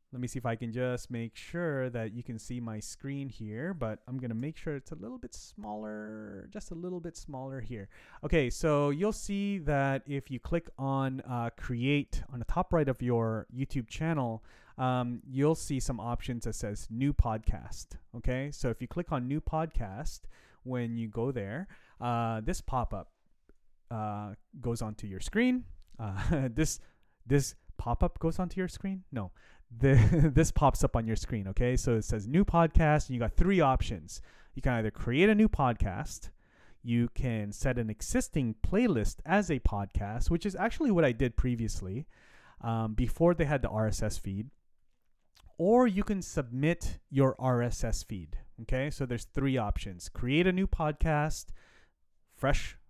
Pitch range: 110-150 Hz